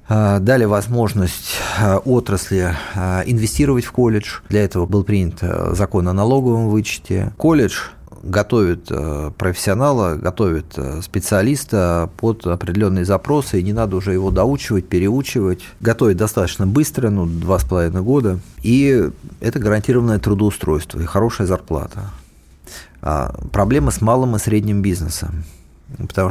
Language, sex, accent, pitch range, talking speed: Russian, male, native, 90-110 Hz, 115 wpm